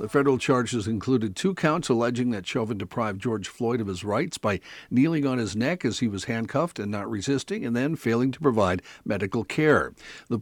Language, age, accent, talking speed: English, 50-69, American, 200 wpm